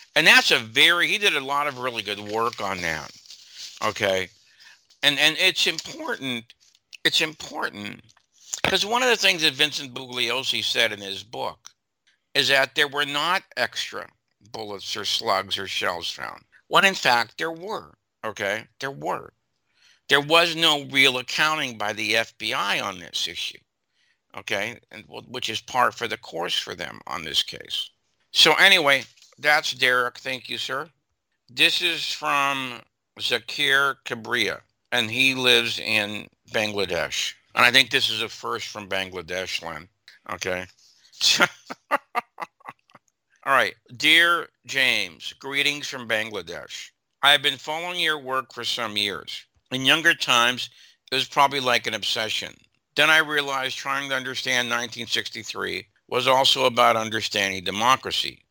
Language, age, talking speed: English, 60-79, 145 wpm